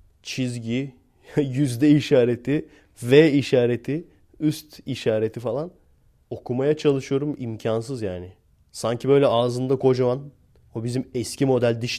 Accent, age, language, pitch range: native, 30-49, Turkish, 105-130 Hz